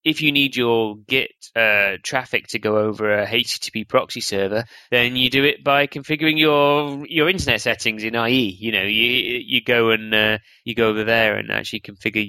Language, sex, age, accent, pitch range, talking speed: English, male, 20-39, British, 105-125 Hz, 195 wpm